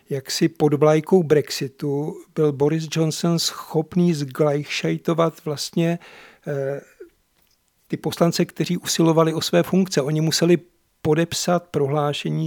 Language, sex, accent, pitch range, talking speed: Czech, male, native, 145-170 Hz, 100 wpm